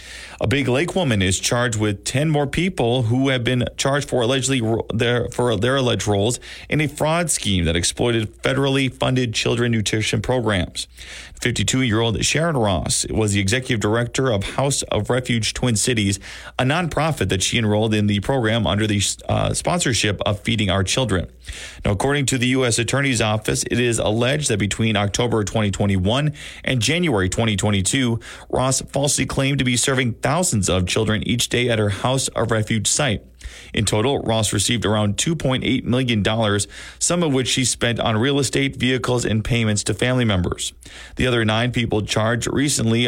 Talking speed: 170 wpm